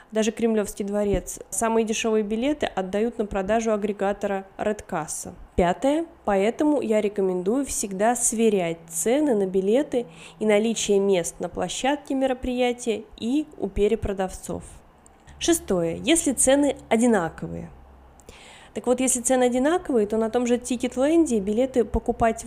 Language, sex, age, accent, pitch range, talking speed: Russian, female, 20-39, native, 205-245 Hz, 120 wpm